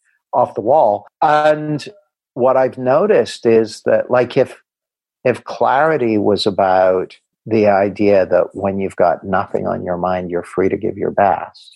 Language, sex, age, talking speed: English, male, 50-69, 160 wpm